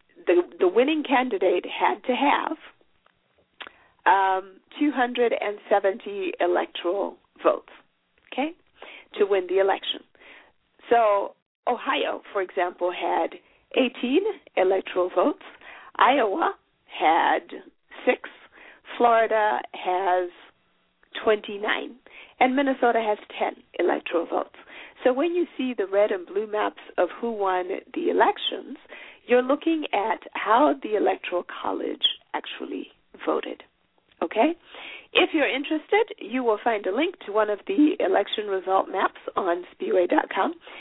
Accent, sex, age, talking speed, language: American, female, 50-69, 115 wpm, English